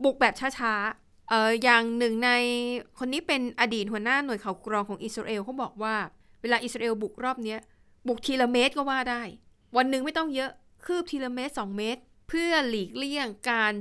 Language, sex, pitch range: Thai, female, 200-250 Hz